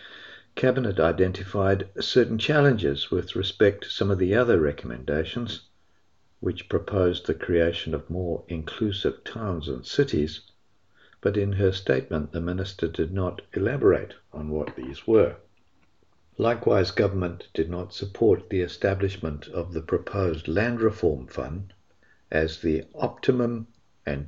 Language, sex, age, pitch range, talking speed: English, male, 50-69, 85-105 Hz, 130 wpm